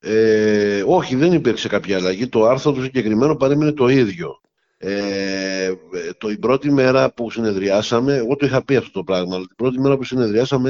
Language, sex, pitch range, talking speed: Greek, male, 105-135 Hz, 185 wpm